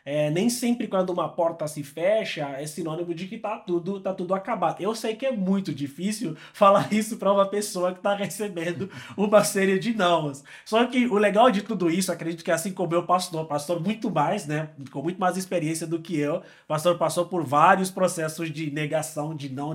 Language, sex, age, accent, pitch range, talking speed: Portuguese, male, 20-39, Brazilian, 160-205 Hz, 205 wpm